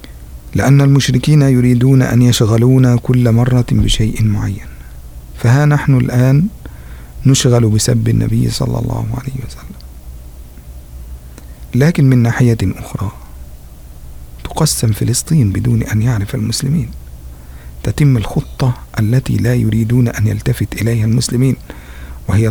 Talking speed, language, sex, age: 105 wpm, Indonesian, male, 50-69